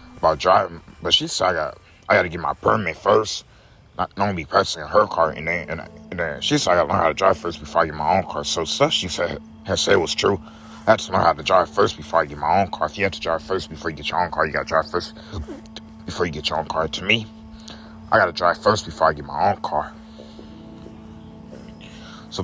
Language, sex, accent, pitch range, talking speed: English, male, American, 75-105 Hz, 260 wpm